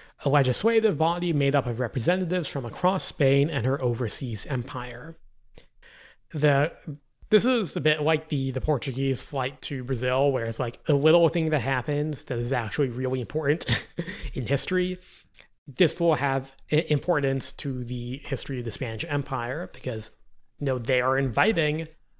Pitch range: 125-150 Hz